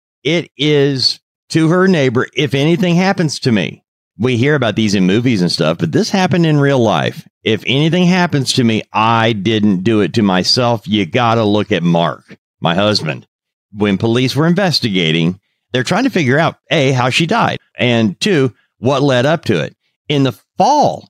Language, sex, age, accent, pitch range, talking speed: English, male, 50-69, American, 105-155 Hz, 190 wpm